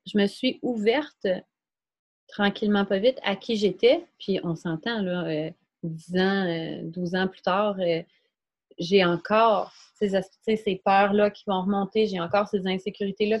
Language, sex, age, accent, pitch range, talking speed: French, female, 30-49, Canadian, 180-225 Hz, 155 wpm